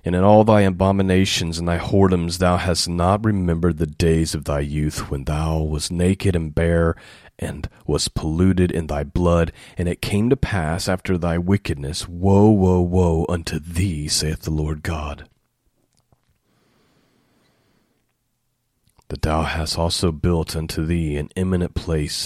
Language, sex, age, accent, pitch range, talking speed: English, male, 30-49, American, 80-100 Hz, 150 wpm